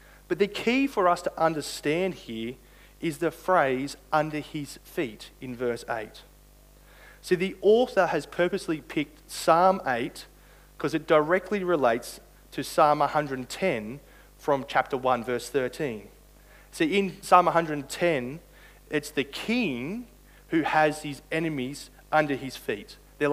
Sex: male